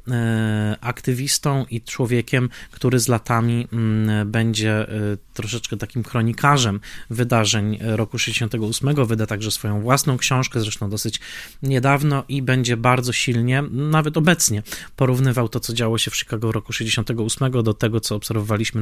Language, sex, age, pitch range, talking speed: Polish, male, 20-39, 115-135 Hz, 130 wpm